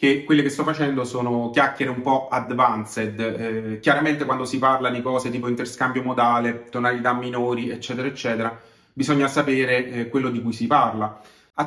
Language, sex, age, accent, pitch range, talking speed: Italian, male, 30-49, native, 120-140 Hz, 170 wpm